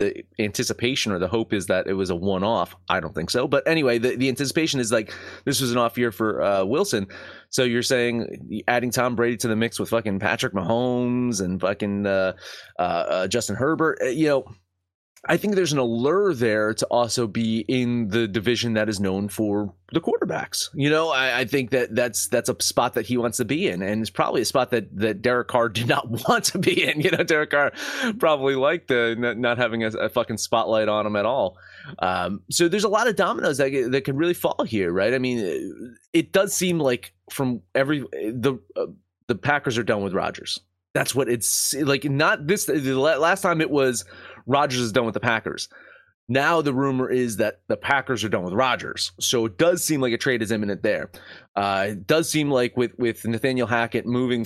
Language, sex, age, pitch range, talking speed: English, male, 30-49, 110-140 Hz, 220 wpm